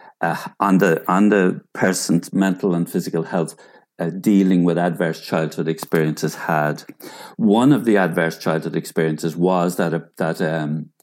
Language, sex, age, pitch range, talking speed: English, male, 50-69, 85-100 Hz, 150 wpm